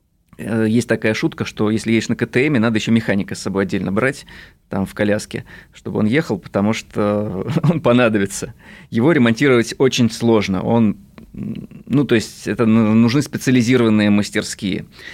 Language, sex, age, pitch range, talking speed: Russian, male, 20-39, 105-125 Hz, 145 wpm